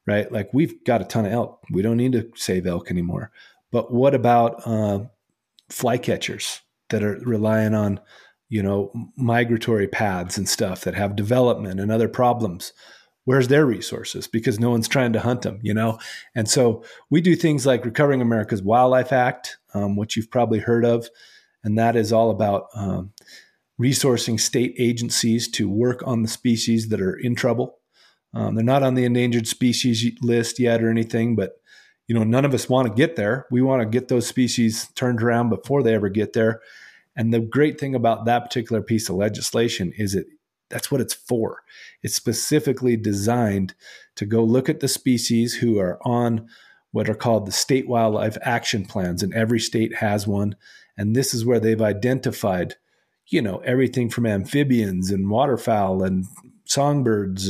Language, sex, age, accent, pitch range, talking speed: English, male, 40-59, American, 105-125 Hz, 180 wpm